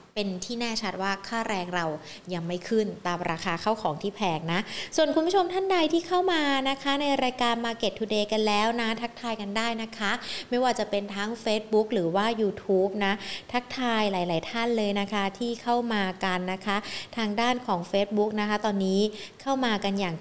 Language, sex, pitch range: Thai, female, 205-250 Hz